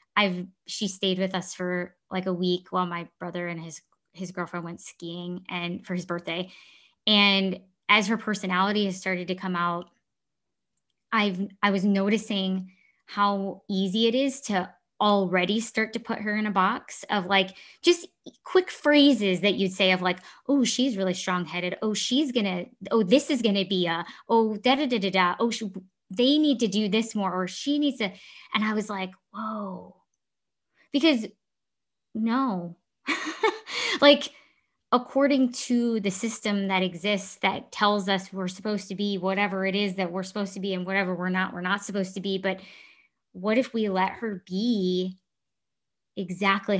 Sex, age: female, 20-39